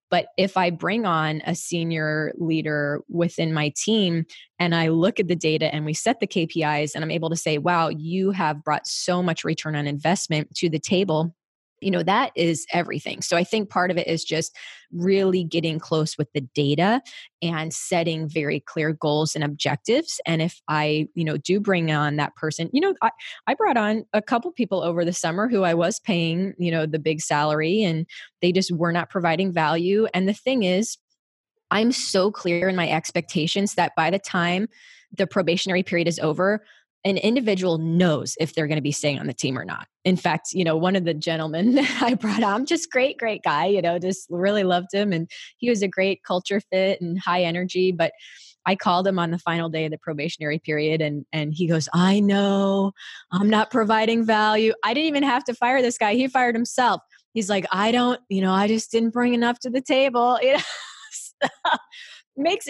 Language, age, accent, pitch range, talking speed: English, 20-39, American, 160-215 Hz, 205 wpm